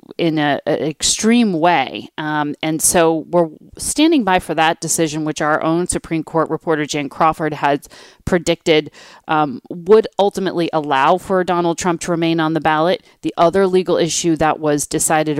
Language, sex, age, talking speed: English, female, 40-59, 165 wpm